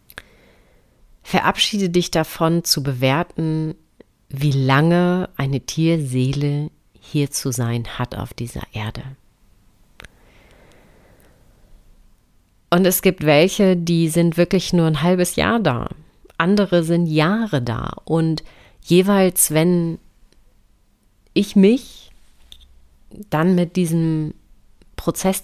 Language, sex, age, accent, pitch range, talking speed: German, female, 40-59, German, 135-180 Hz, 95 wpm